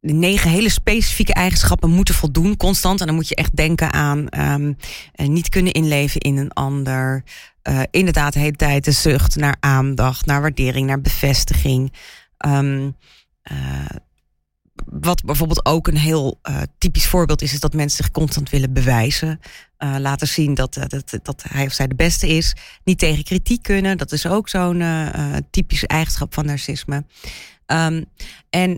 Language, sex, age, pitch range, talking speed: Dutch, female, 30-49, 140-175 Hz, 165 wpm